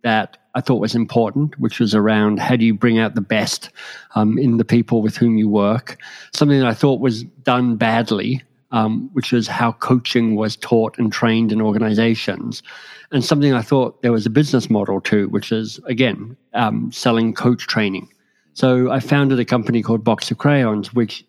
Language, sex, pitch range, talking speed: English, male, 110-130 Hz, 190 wpm